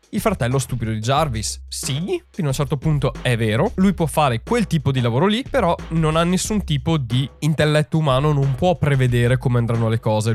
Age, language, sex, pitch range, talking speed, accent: 20-39, Italian, male, 125-160 Hz, 210 wpm, native